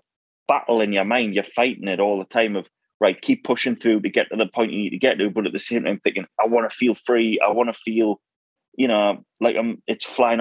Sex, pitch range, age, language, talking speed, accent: male, 110-130 Hz, 30-49, English, 265 wpm, British